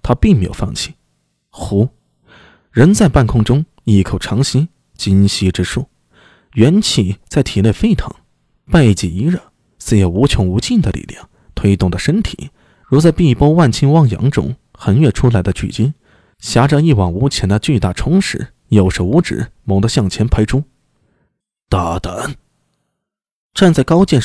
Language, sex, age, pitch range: Chinese, male, 20-39, 95-145 Hz